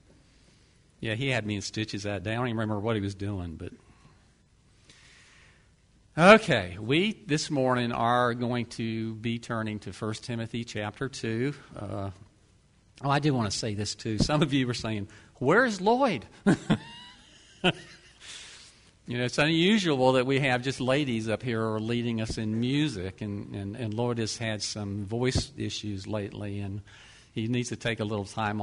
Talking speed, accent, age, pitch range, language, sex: 170 wpm, American, 50-69, 100-120 Hz, English, male